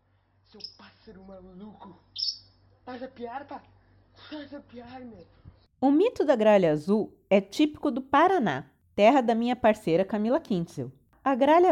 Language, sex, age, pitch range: Portuguese, female, 30-49, 200-285 Hz